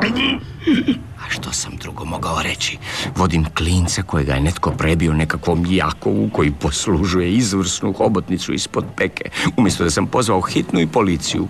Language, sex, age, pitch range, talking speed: Croatian, male, 50-69, 80-105 Hz, 140 wpm